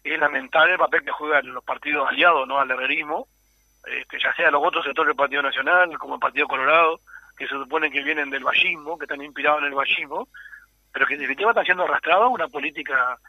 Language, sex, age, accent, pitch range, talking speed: Spanish, male, 40-59, Argentinian, 145-230 Hz, 220 wpm